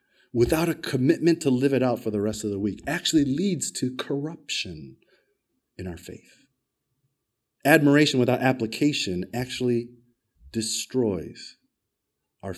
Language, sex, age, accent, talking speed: English, male, 30-49, American, 125 wpm